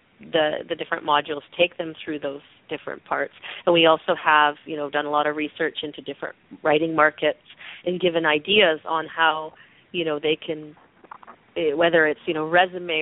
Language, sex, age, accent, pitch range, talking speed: English, female, 30-49, American, 145-170 Hz, 180 wpm